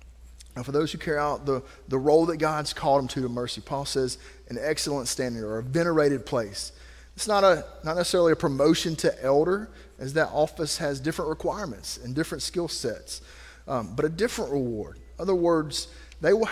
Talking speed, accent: 195 wpm, American